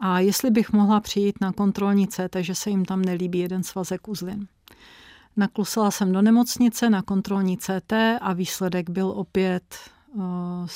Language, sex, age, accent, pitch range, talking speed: Czech, female, 40-59, native, 185-200 Hz, 155 wpm